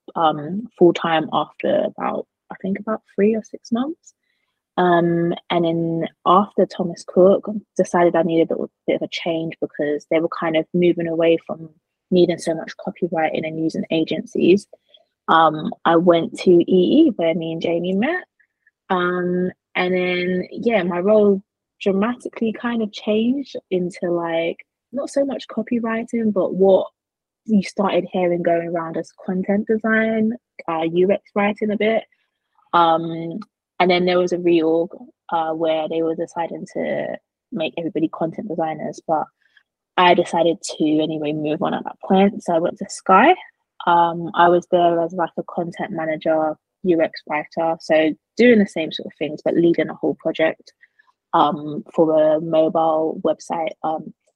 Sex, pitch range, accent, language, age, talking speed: female, 165-205 Hz, British, English, 20-39, 160 wpm